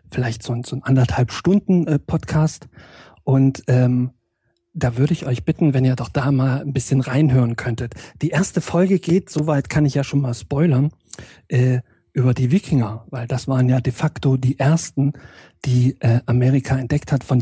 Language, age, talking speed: German, 40-59, 185 wpm